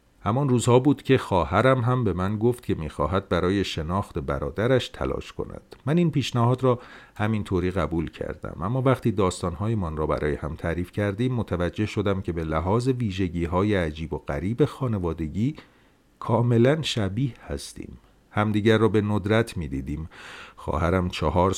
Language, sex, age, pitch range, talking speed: Persian, male, 50-69, 80-110 Hz, 150 wpm